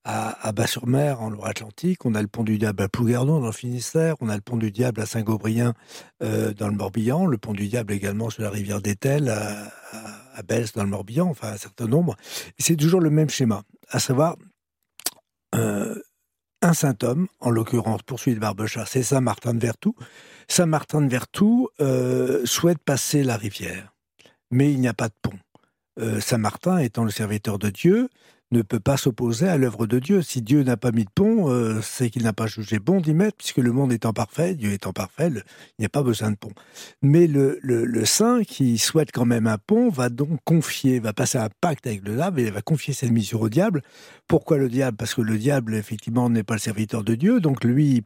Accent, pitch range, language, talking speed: French, 110-145 Hz, French, 215 wpm